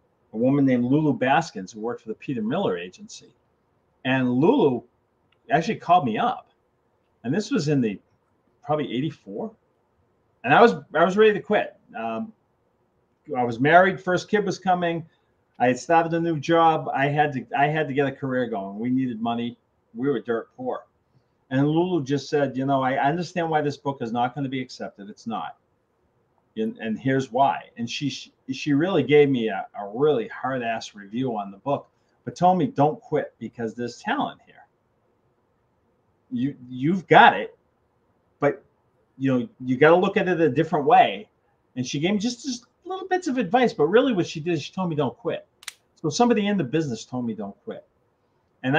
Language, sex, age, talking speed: English, male, 40-59, 195 wpm